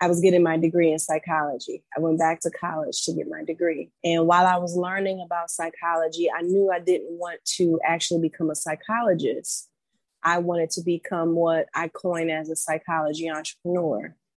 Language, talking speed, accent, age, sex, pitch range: English, 185 wpm, American, 30-49, female, 165-185 Hz